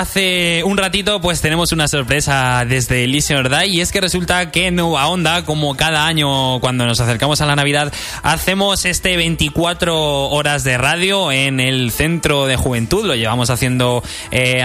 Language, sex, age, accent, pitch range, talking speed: Spanish, male, 20-39, Spanish, 125-165 Hz, 170 wpm